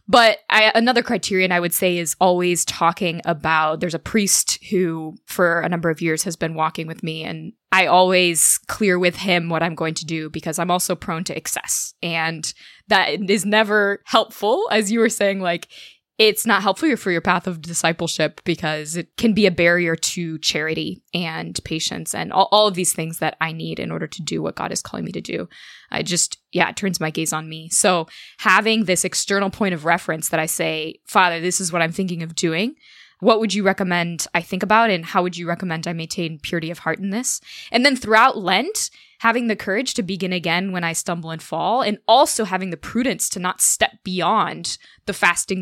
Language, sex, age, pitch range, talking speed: English, female, 20-39, 165-205 Hz, 210 wpm